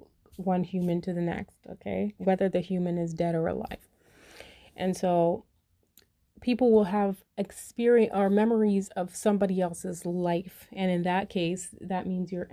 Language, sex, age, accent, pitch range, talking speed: English, female, 30-49, American, 175-210 Hz, 155 wpm